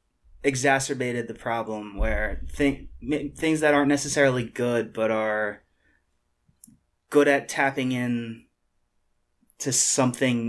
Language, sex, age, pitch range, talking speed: English, male, 20-39, 115-135 Hz, 105 wpm